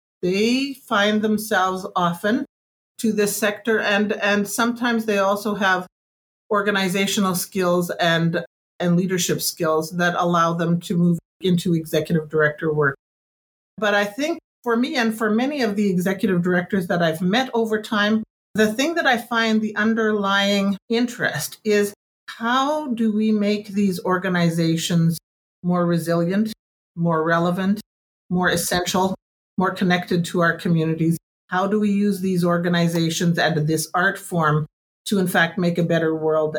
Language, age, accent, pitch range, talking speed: English, 50-69, American, 165-210 Hz, 145 wpm